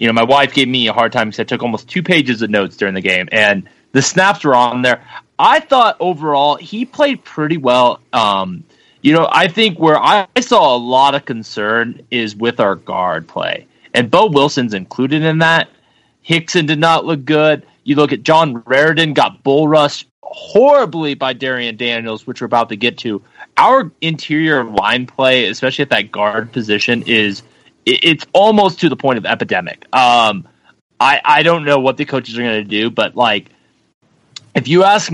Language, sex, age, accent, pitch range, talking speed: English, male, 20-39, American, 115-155 Hz, 195 wpm